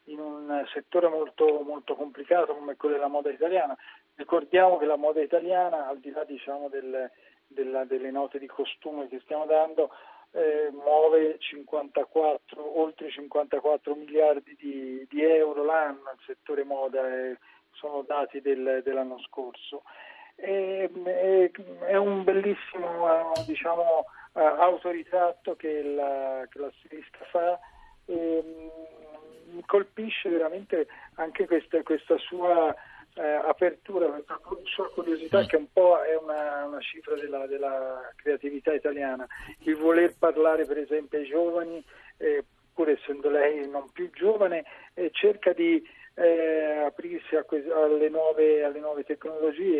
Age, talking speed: 40-59, 135 wpm